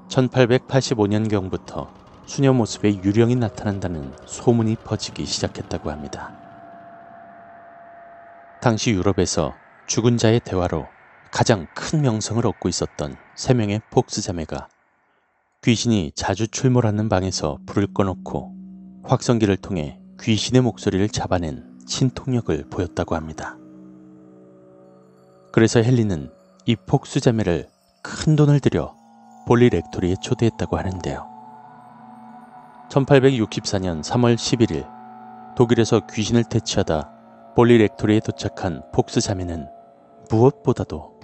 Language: Korean